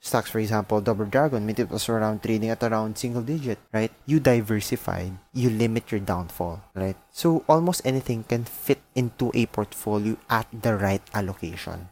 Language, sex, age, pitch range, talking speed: English, male, 20-39, 105-125 Hz, 170 wpm